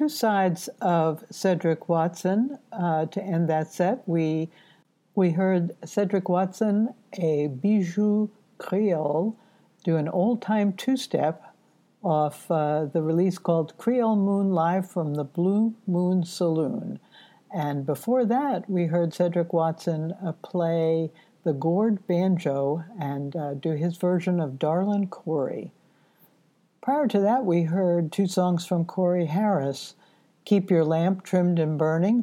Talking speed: 135 wpm